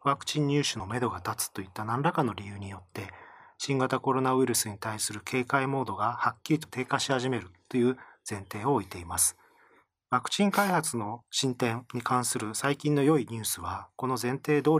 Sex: male